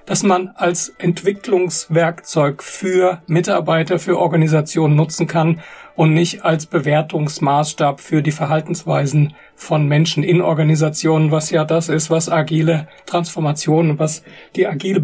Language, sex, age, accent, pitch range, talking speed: German, male, 40-59, German, 155-180 Hz, 125 wpm